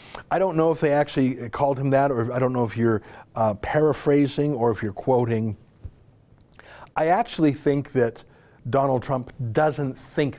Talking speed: 170 wpm